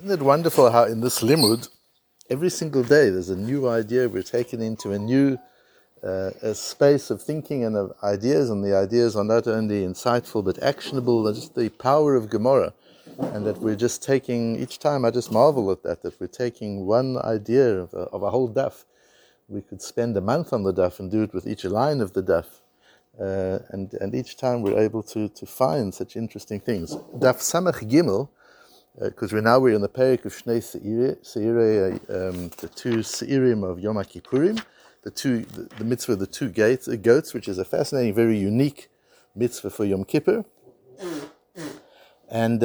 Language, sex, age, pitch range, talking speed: English, male, 60-79, 105-130 Hz, 195 wpm